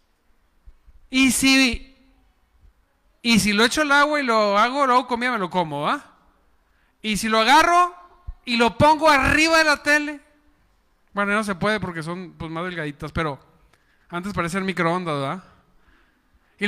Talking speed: 160 wpm